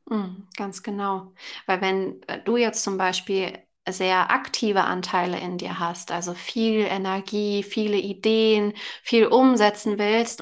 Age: 20-39